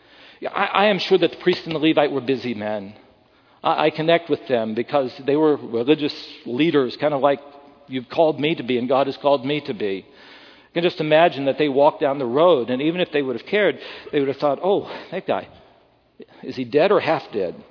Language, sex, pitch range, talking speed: English, male, 145-205 Hz, 230 wpm